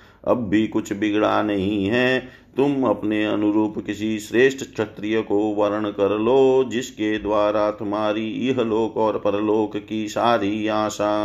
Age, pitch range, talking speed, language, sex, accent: 50-69, 105-120 Hz, 135 wpm, Hindi, male, native